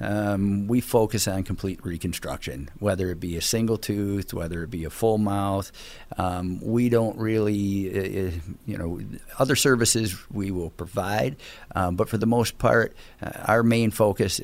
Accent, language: American, English